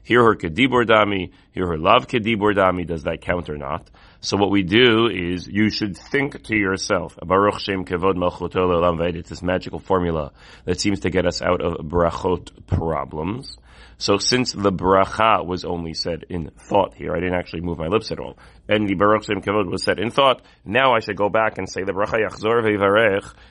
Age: 30-49